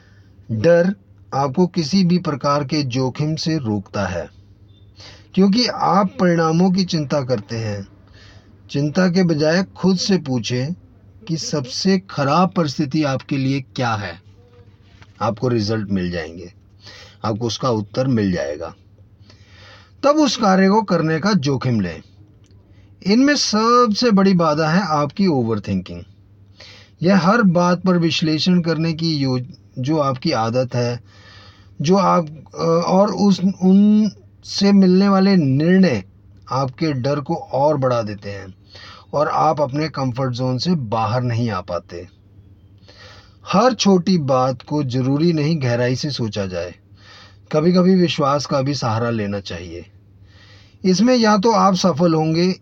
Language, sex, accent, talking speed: Hindi, male, native, 135 wpm